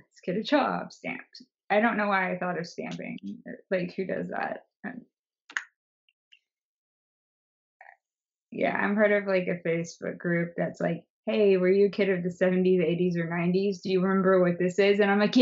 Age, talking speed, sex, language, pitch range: 20-39, 180 wpm, female, English, 175-205 Hz